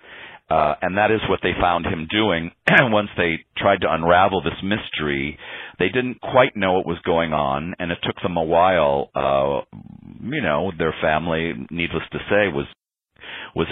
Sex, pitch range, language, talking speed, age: male, 75-90 Hz, English, 180 wpm, 40-59